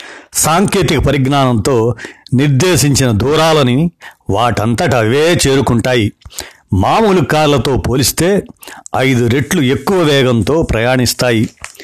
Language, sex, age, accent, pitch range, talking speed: Telugu, male, 60-79, native, 120-160 Hz, 70 wpm